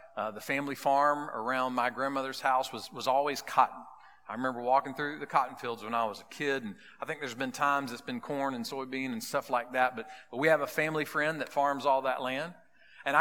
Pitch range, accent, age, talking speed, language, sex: 130-185 Hz, American, 40-59, 235 wpm, English, male